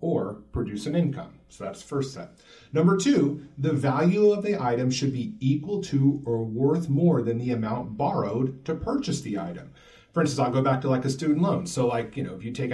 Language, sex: English, male